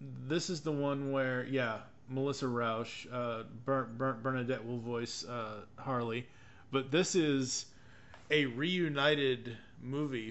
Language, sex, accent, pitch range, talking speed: English, male, American, 120-140 Hz, 130 wpm